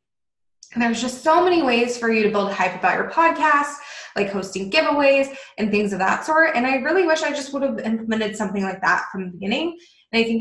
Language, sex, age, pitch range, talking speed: English, female, 10-29, 200-275 Hz, 235 wpm